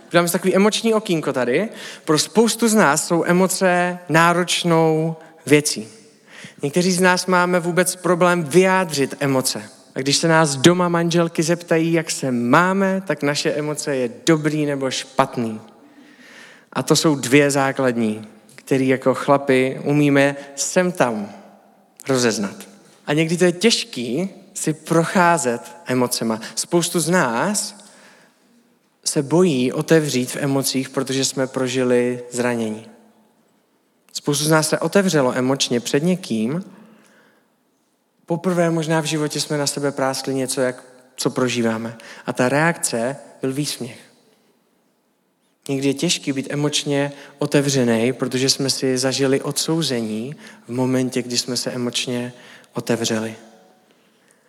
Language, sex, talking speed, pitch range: Czech, male, 125 wpm, 130-180 Hz